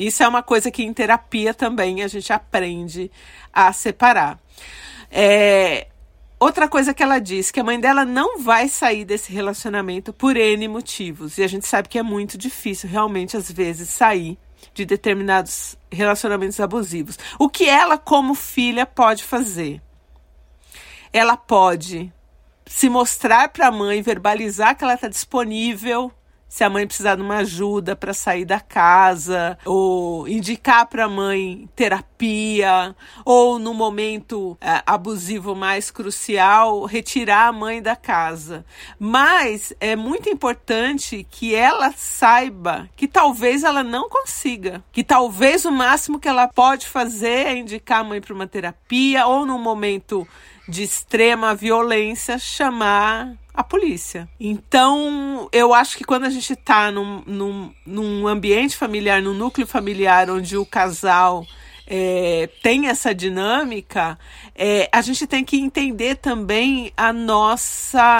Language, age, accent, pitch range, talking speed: Portuguese, 40-59, Brazilian, 195-245 Hz, 140 wpm